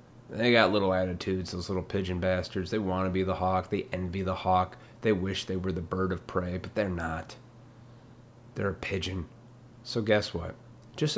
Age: 30-49